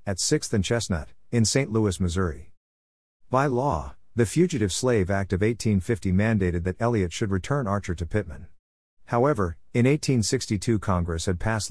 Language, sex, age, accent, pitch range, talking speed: English, male, 50-69, American, 90-115 Hz, 155 wpm